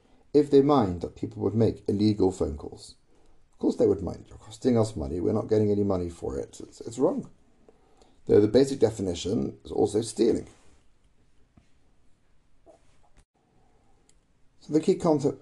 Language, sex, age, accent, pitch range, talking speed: English, male, 50-69, British, 105-145 Hz, 155 wpm